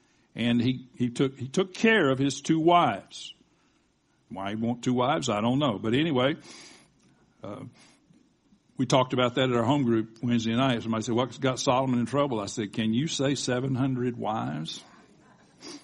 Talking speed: 175 wpm